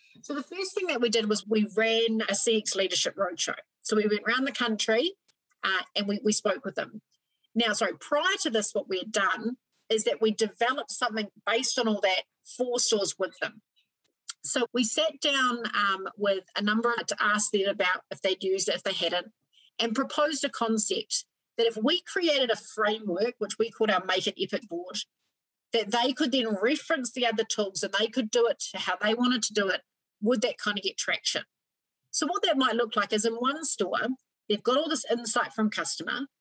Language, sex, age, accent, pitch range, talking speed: English, female, 40-59, Australian, 205-250 Hz, 215 wpm